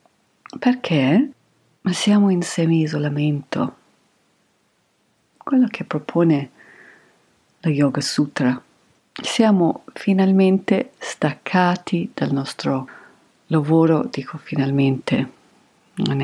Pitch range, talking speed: 145-200 Hz, 75 wpm